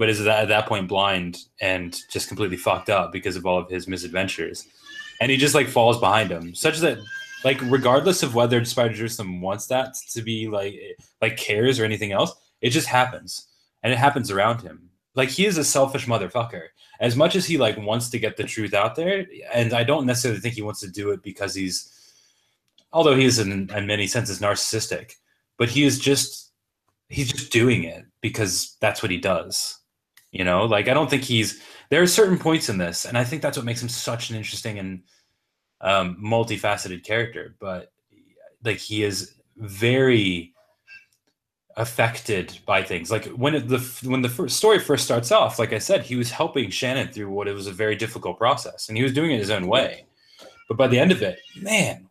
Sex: male